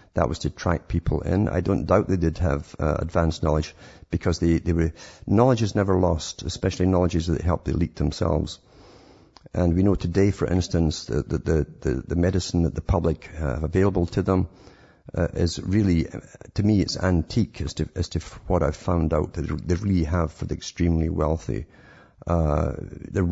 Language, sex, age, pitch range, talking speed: English, male, 50-69, 80-100 Hz, 190 wpm